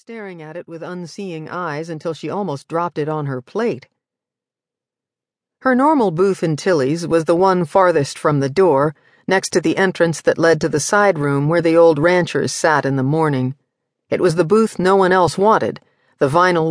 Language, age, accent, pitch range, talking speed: English, 50-69, American, 150-195 Hz, 195 wpm